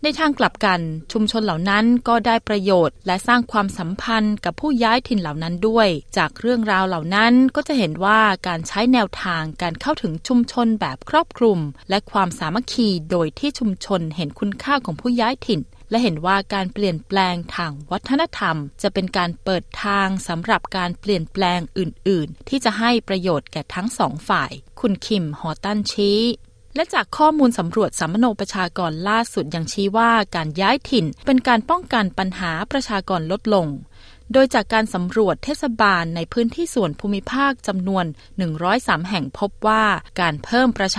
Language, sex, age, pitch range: Thai, female, 20-39, 180-235 Hz